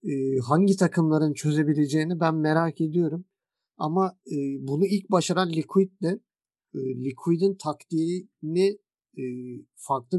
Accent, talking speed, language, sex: native, 105 wpm, Turkish, male